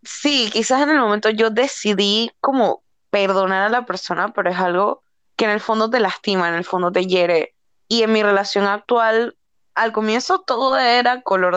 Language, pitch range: Spanish, 195-225 Hz